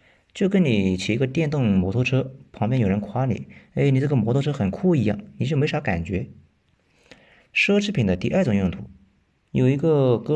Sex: male